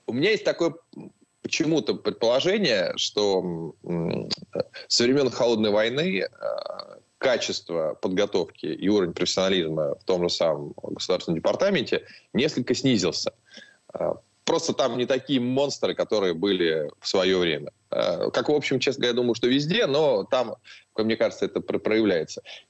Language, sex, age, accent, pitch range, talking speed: Russian, male, 20-39, native, 105-140 Hz, 130 wpm